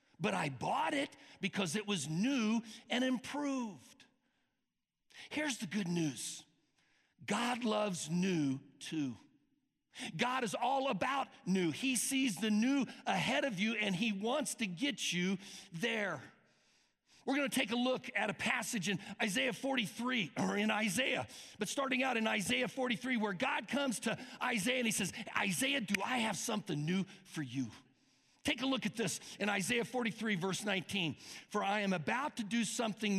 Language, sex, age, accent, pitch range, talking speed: English, male, 50-69, American, 180-255 Hz, 165 wpm